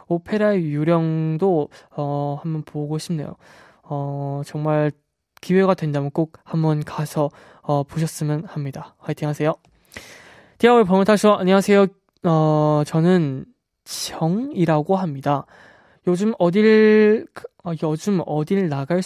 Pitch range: 150-200 Hz